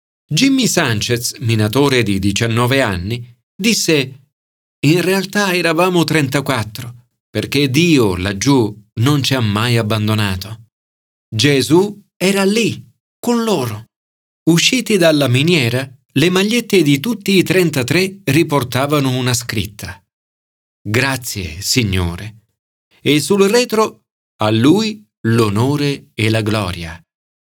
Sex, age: male, 40-59